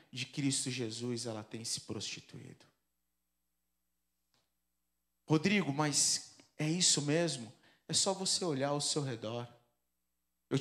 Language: Portuguese